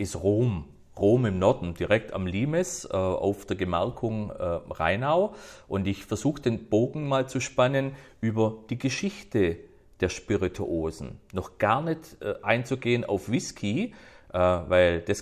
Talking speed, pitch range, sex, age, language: 145 wpm, 95-125 Hz, male, 40-59, German